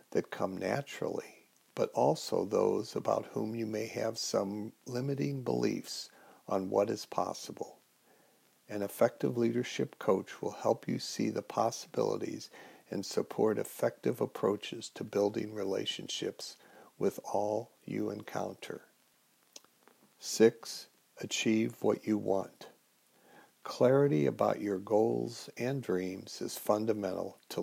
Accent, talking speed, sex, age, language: American, 115 wpm, male, 60-79, English